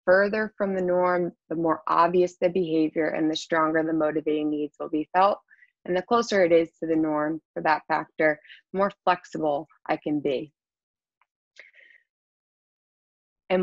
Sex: female